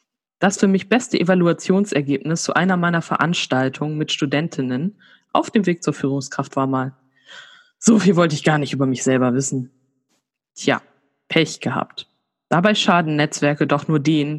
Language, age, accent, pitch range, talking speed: German, 20-39, German, 145-190 Hz, 155 wpm